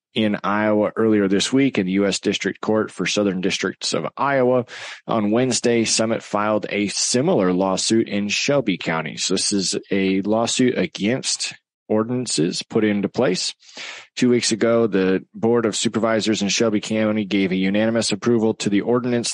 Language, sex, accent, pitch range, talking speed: English, male, American, 100-120 Hz, 160 wpm